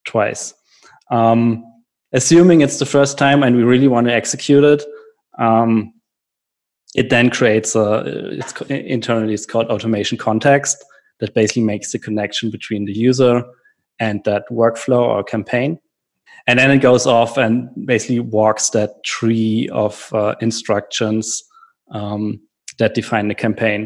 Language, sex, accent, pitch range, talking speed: English, male, German, 110-125 Hz, 145 wpm